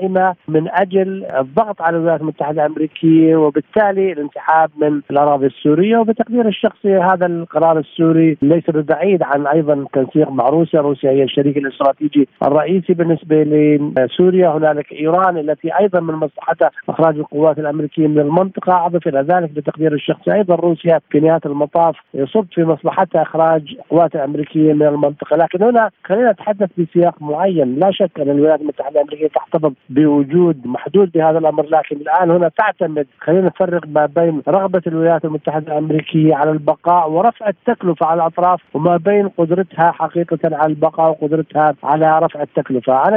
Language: Arabic